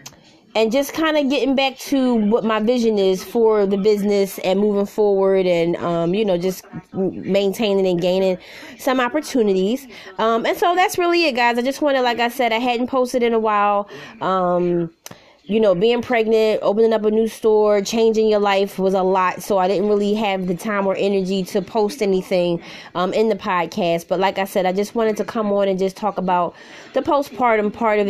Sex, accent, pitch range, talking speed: female, American, 195-240 Hz, 205 wpm